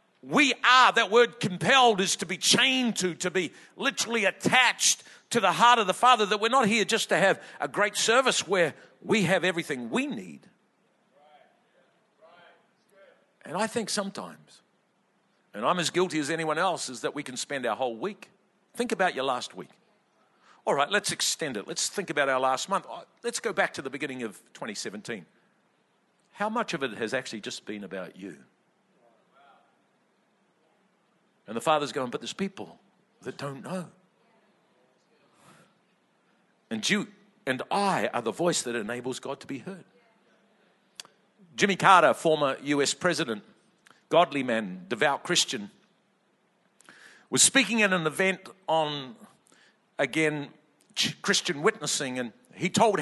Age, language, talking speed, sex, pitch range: 50-69, English, 150 wpm, male, 150-210 Hz